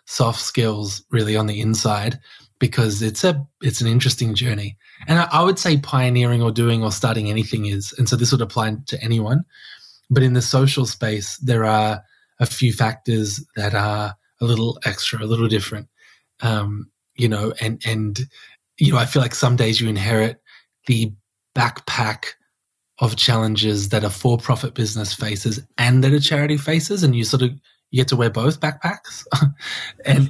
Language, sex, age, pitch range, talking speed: English, male, 20-39, 110-130 Hz, 180 wpm